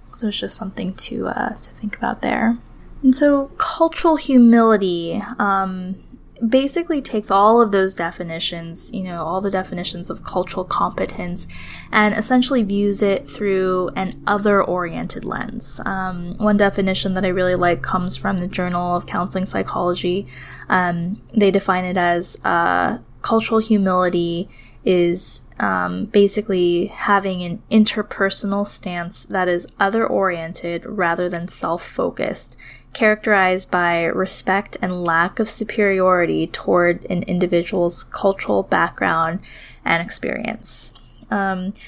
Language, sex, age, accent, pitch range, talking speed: English, female, 10-29, American, 180-215 Hz, 125 wpm